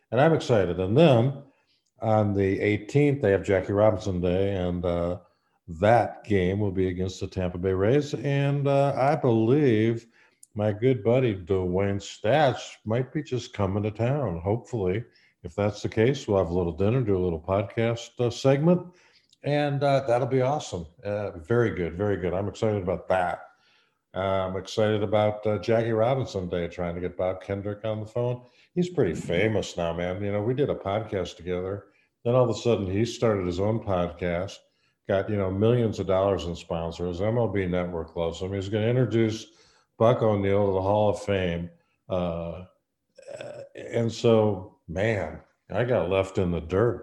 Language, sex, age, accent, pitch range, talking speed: English, male, 50-69, American, 90-115 Hz, 180 wpm